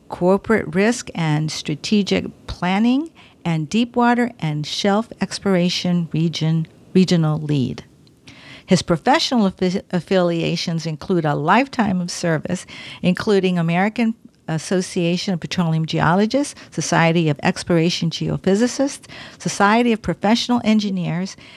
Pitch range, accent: 165-205 Hz, American